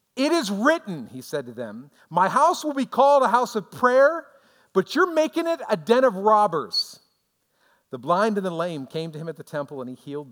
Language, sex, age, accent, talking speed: English, male, 50-69, American, 220 wpm